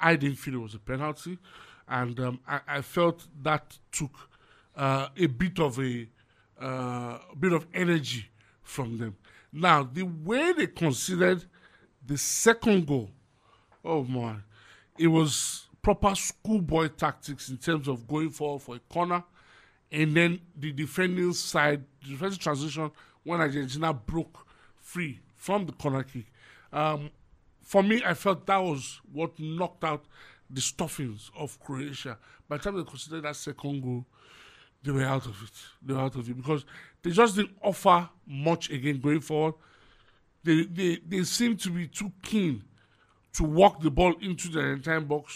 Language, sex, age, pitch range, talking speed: English, male, 50-69, 130-175 Hz, 160 wpm